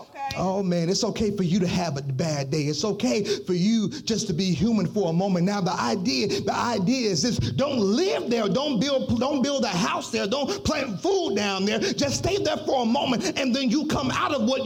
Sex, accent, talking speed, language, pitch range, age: male, American, 235 wpm, English, 200-275 Hz, 30-49